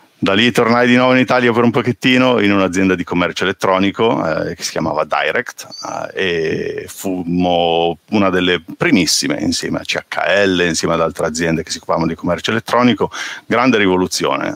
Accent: native